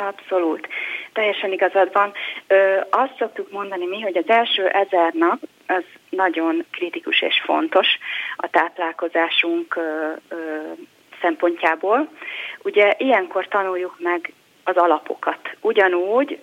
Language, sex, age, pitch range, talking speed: Hungarian, female, 30-49, 170-210 Hz, 100 wpm